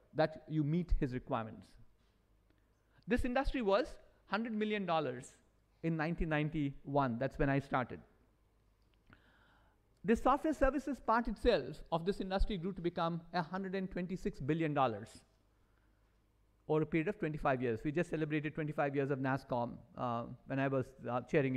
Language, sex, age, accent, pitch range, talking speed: English, male, 50-69, Indian, 130-180 Hz, 135 wpm